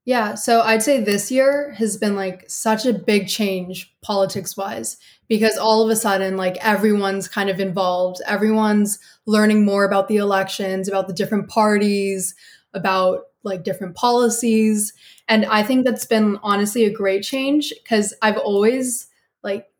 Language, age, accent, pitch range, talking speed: English, 20-39, American, 195-225 Hz, 160 wpm